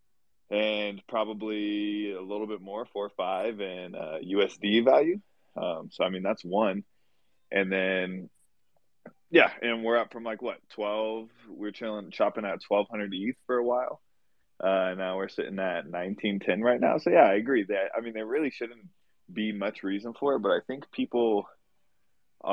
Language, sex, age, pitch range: English, male, 20-39, 95-115 Hz